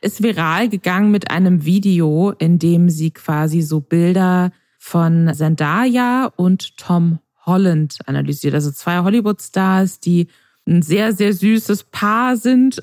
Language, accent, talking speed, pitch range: German, German, 135 wpm, 165-200 Hz